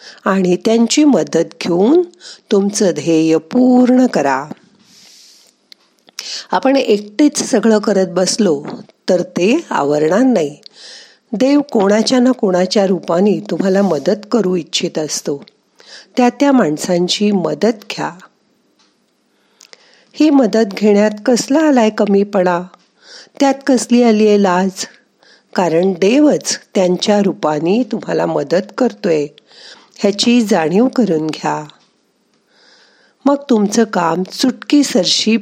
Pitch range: 180-250 Hz